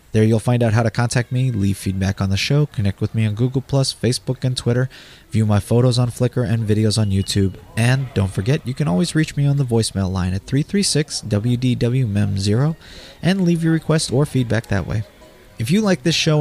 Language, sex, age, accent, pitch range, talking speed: English, male, 30-49, American, 100-135 Hz, 210 wpm